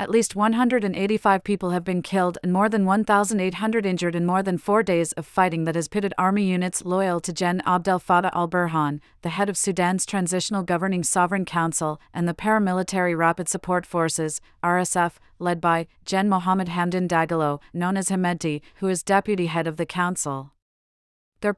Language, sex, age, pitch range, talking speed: English, female, 30-49, 170-195 Hz, 170 wpm